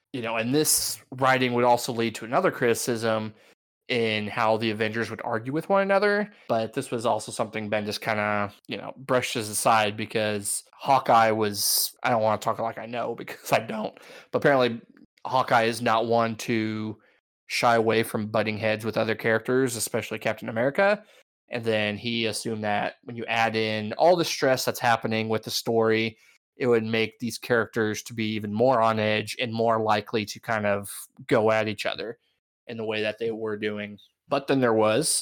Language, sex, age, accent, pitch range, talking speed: English, male, 20-39, American, 110-130 Hz, 195 wpm